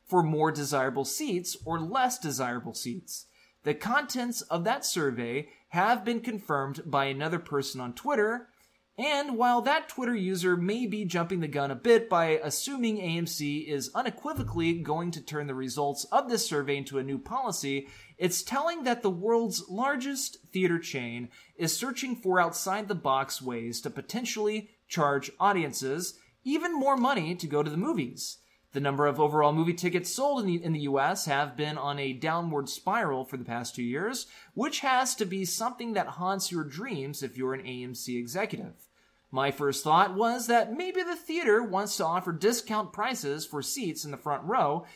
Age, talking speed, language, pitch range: 20-39, 175 wpm, English, 140-220 Hz